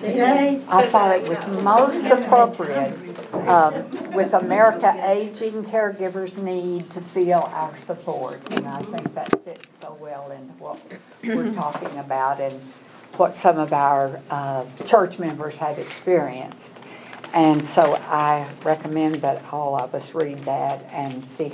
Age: 60-79